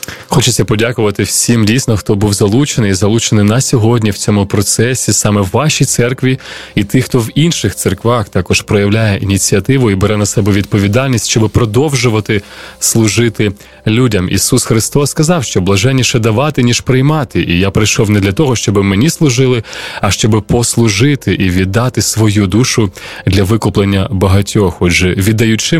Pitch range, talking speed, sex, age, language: 100-130 Hz, 150 wpm, male, 20-39, Ukrainian